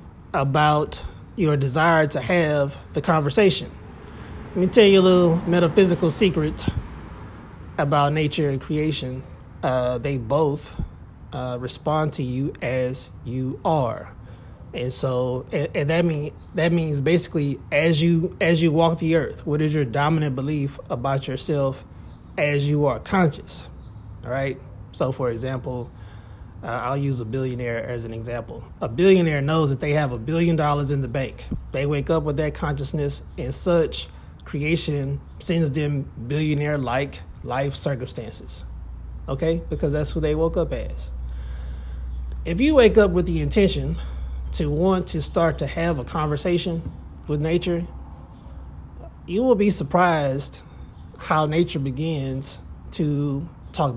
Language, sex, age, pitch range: English, male, 20-39, 105-160 Hz